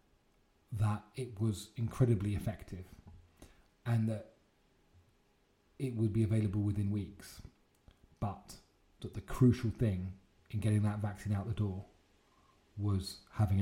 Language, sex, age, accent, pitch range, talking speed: English, male, 30-49, British, 100-115 Hz, 120 wpm